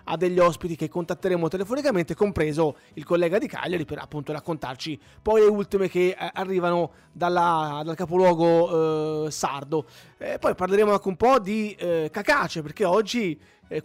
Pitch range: 160-205 Hz